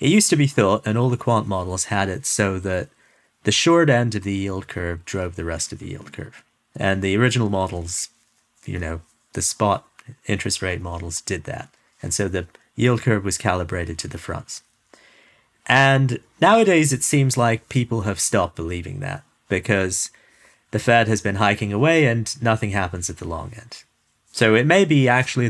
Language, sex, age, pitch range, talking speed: English, male, 30-49, 95-125 Hz, 190 wpm